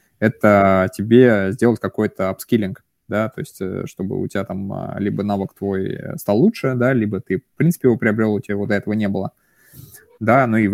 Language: Russian